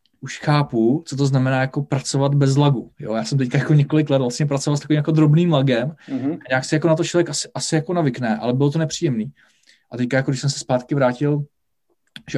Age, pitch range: 20-39, 120-140 Hz